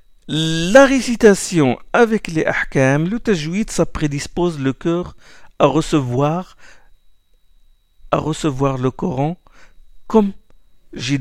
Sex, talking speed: male, 95 wpm